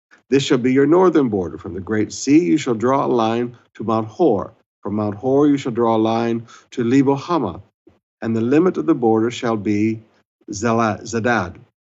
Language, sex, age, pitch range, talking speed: English, male, 60-79, 110-140 Hz, 190 wpm